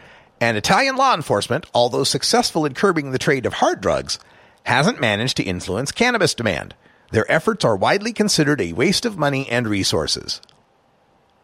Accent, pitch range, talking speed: American, 110-160 Hz, 155 wpm